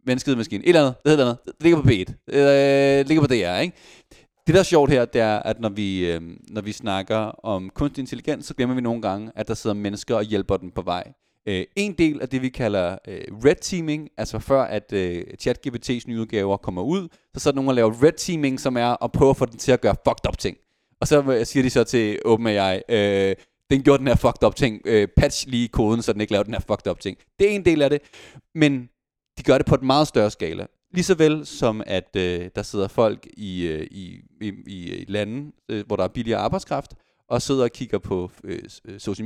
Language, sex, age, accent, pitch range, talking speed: English, male, 30-49, Danish, 110-150 Hz, 235 wpm